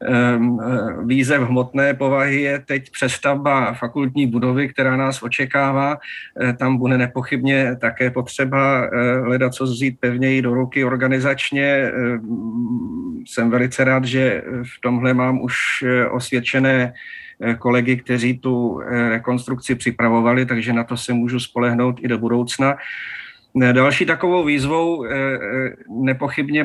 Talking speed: 115 wpm